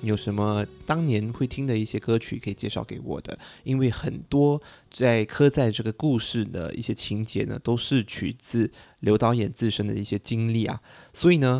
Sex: male